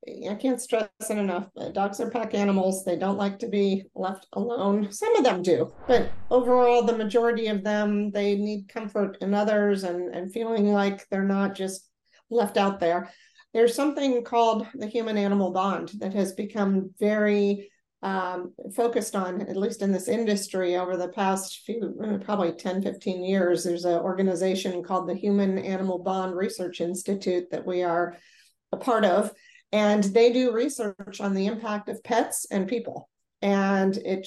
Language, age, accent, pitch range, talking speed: English, 50-69, American, 190-220 Hz, 165 wpm